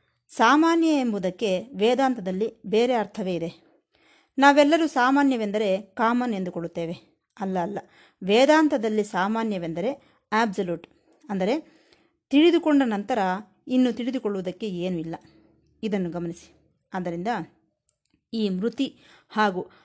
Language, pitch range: Kannada, 190-265 Hz